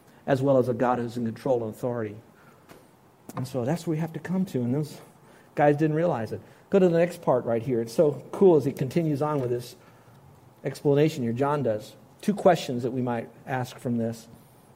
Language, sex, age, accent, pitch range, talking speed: English, male, 50-69, American, 125-170 Hz, 215 wpm